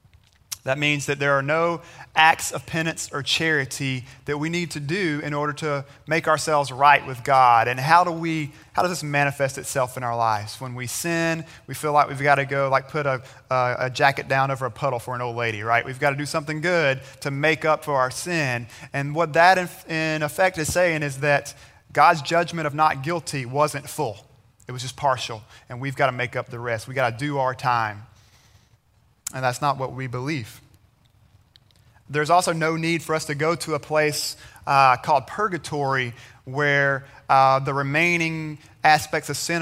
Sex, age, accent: male, 30-49, American